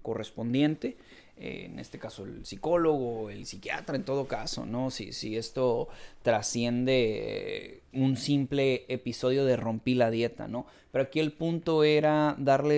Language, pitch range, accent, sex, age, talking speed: Spanish, 125-155 Hz, Mexican, male, 30-49, 150 wpm